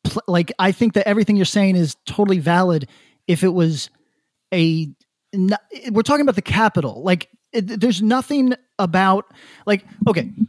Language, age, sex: English, 30-49, male